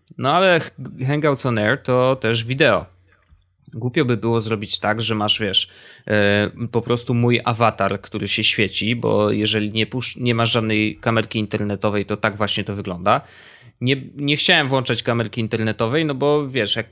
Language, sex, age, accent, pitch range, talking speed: Polish, male, 20-39, native, 110-135 Hz, 170 wpm